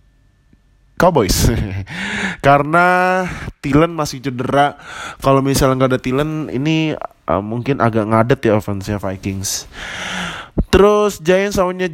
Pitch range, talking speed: 120-155 Hz, 105 wpm